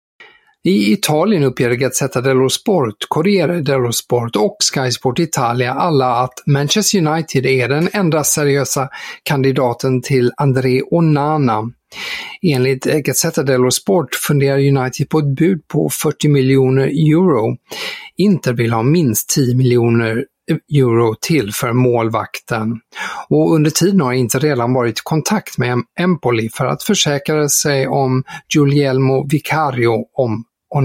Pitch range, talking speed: 125-160 Hz, 130 wpm